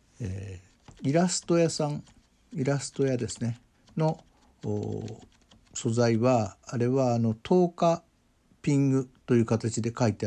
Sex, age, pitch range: male, 60-79, 105-140 Hz